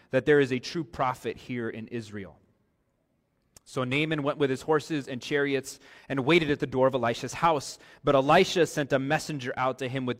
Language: English